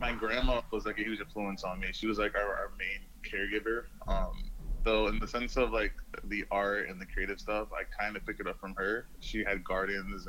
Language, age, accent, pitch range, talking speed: English, 20-39, American, 95-110 Hz, 235 wpm